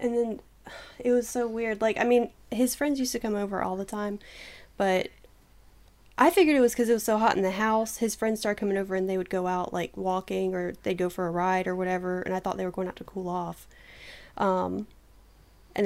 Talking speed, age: 240 wpm, 10-29